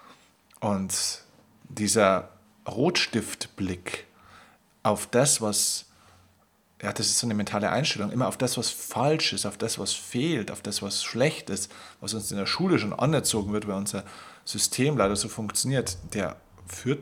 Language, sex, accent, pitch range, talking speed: German, male, German, 100-120 Hz, 155 wpm